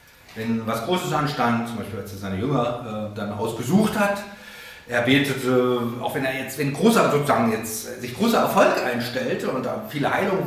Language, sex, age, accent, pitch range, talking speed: German, male, 40-59, German, 120-185 Hz, 190 wpm